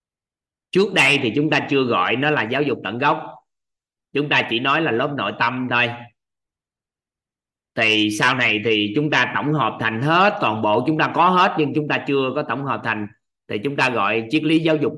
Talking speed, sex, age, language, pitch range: 215 wpm, male, 20-39, Vietnamese, 115-155 Hz